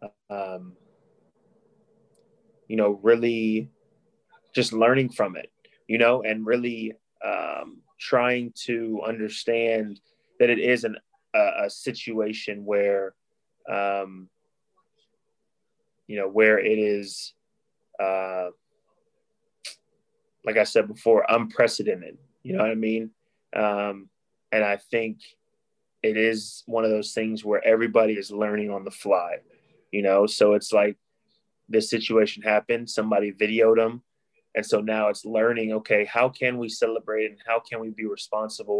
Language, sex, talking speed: English, male, 130 wpm